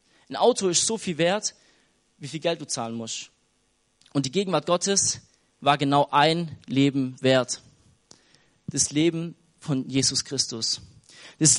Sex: male